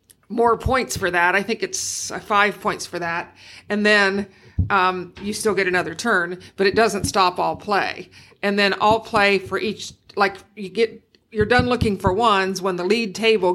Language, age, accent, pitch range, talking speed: English, 50-69, American, 185-215 Hz, 190 wpm